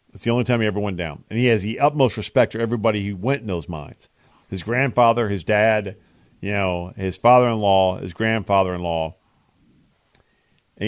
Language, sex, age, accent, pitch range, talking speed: English, male, 50-69, American, 95-125 Hz, 175 wpm